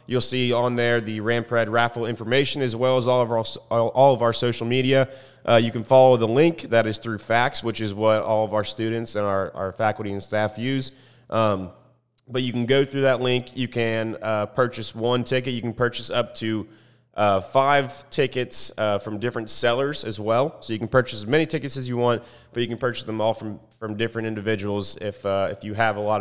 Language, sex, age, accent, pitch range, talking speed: English, male, 30-49, American, 110-130 Hz, 225 wpm